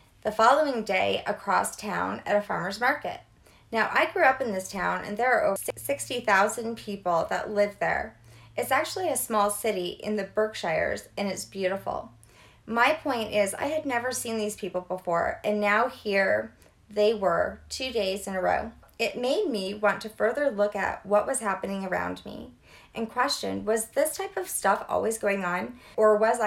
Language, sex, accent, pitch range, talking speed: English, female, American, 190-235 Hz, 185 wpm